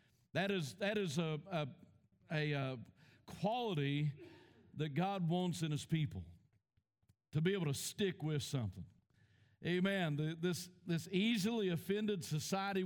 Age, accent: 50-69, American